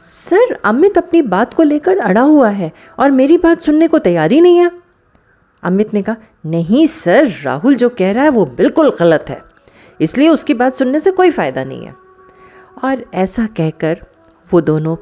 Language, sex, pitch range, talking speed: Hindi, female, 165-265 Hz, 185 wpm